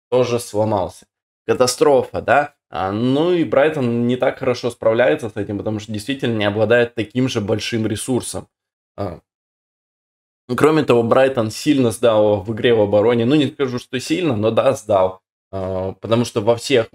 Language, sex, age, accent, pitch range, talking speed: Russian, male, 20-39, native, 105-125 Hz, 165 wpm